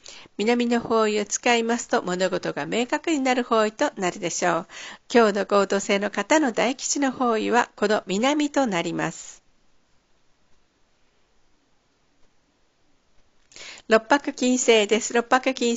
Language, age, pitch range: Japanese, 50-69, 195-250 Hz